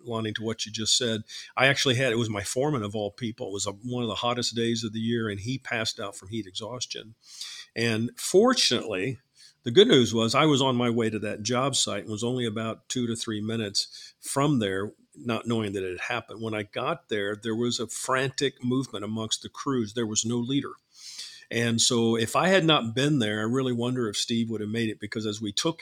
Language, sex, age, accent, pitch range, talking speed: English, male, 50-69, American, 110-130 Hz, 235 wpm